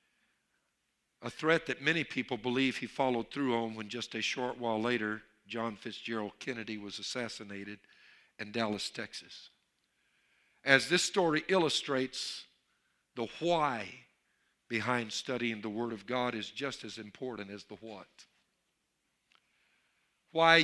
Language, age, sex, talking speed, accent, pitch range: English, 50-69, male, 130 wpm, American, 115-150 Hz